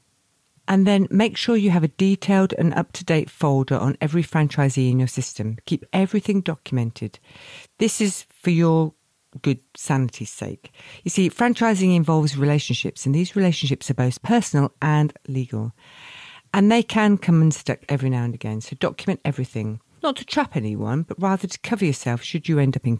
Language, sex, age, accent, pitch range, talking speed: English, female, 50-69, British, 130-180 Hz, 170 wpm